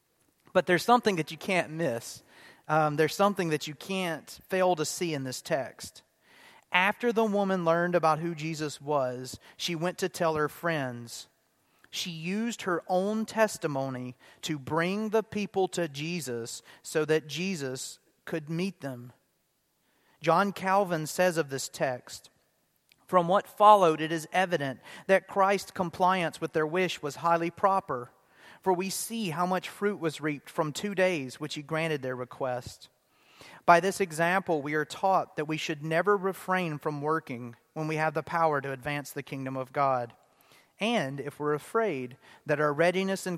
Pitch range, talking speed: 145-185 Hz, 165 wpm